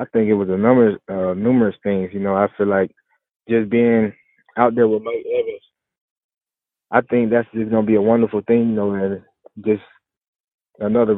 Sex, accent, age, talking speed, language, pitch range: male, American, 20-39, 195 wpm, English, 95-110 Hz